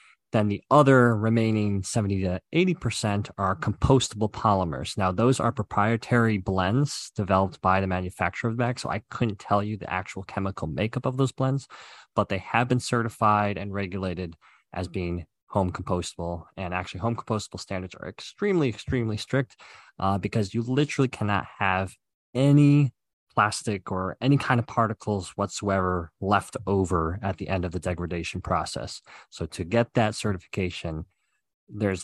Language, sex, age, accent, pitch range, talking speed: English, male, 20-39, American, 95-115 Hz, 155 wpm